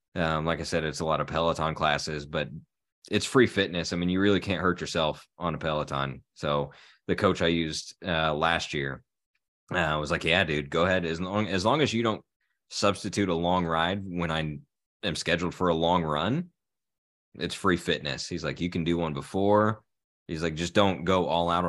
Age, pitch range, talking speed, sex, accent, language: 20-39, 75-90 Hz, 210 wpm, male, American, English